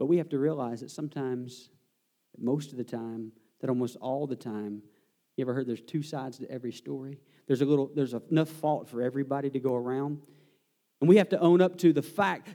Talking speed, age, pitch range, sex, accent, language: 215 wpm, 40-59, 135-190 Hz, male, American, English